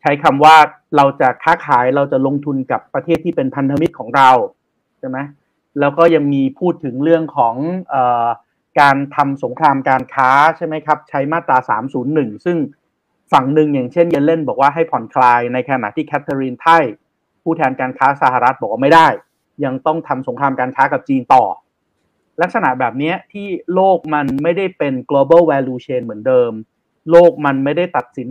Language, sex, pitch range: Thai, male, 130-165 Hz